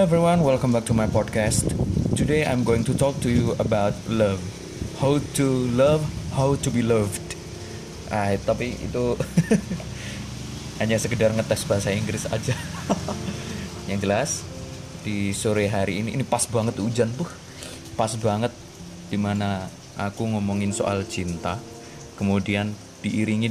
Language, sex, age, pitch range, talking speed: Indonesian, male, 20-39, 100-120 Hz, 135 wpm